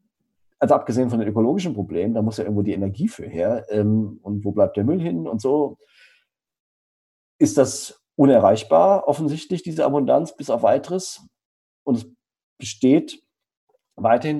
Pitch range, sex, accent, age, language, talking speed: 115-180 Hz, male, German, 40-59, German, 150 wpm